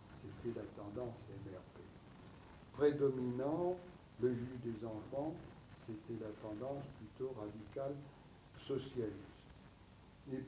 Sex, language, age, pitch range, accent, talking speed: male, English, 60-79, 105-140 Hz, French, 95 wpm